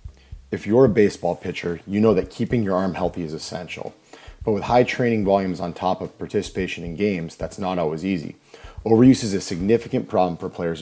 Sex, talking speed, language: male, 200 wpm, English